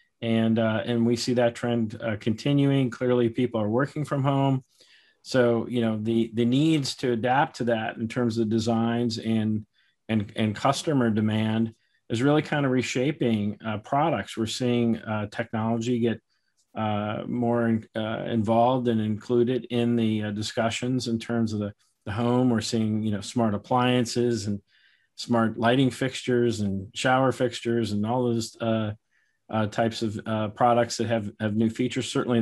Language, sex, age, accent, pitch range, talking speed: English, male, 40-59, American, 110-125 Hz, 170 wpm